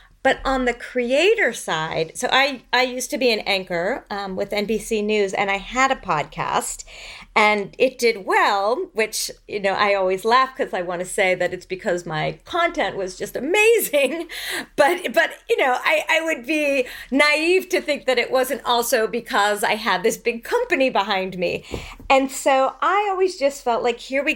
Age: 40-59